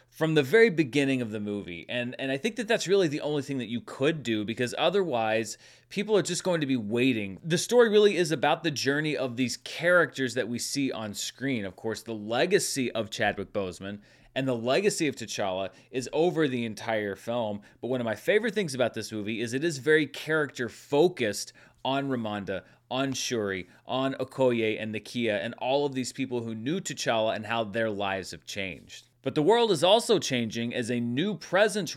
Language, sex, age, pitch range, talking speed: English, male, 30-49, 110-145 Hz, 205 wpm